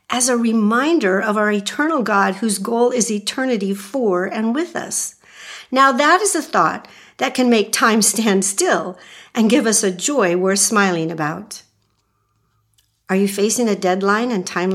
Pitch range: 190-260 Hz